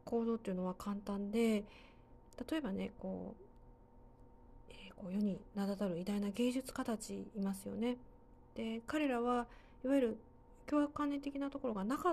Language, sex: Japanese, female